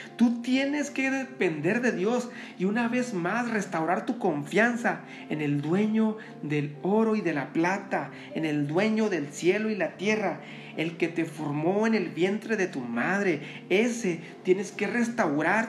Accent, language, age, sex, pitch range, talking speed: Mexican, Spanish, 40-59, male, 165-215 Hz, 170 wpm